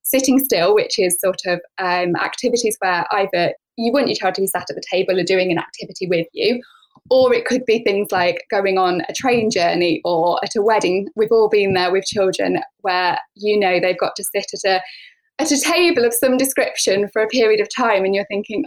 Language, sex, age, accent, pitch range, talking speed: English, female, 10-29, British, 185-255 Hz, 220 wpm